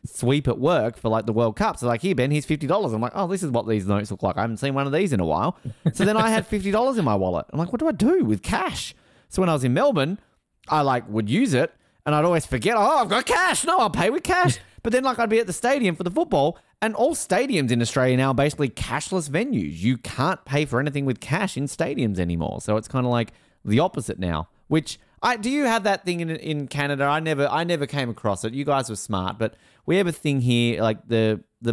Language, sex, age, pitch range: English, male, 30-49, 110-165 Hz